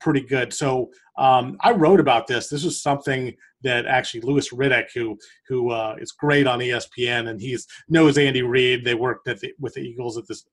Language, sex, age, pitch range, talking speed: English, male, 40-59, 130-165 Hz, 205 wpm